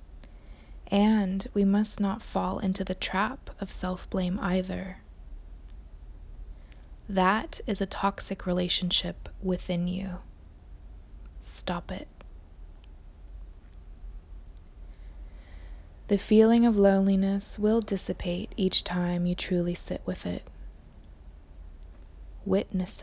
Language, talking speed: English, 90 wpm